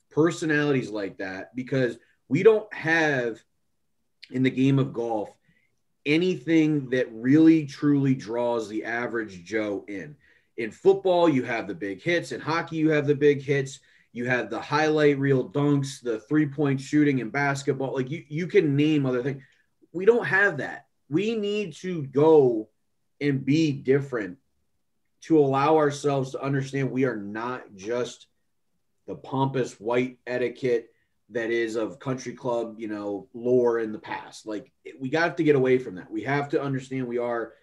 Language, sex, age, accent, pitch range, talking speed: English, male, 30-49, American, 120-150 Hz, 165 wpm